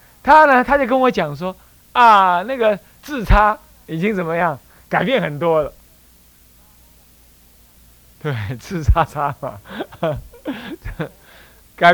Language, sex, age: Chinese, male, 30-49